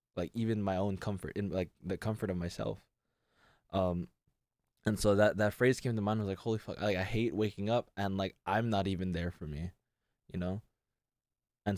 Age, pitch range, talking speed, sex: 20-39, 85-105 Hz, 210 wpm, male